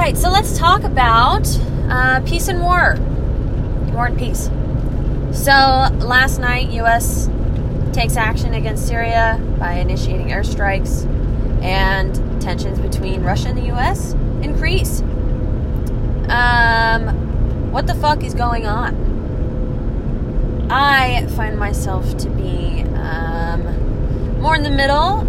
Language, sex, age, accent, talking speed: English, female, 20-39, American, 115 wpm